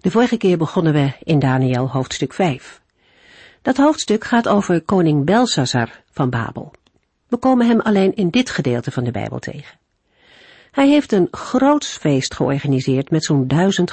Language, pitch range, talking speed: Dutch, 145-200 Hz, 155 wpm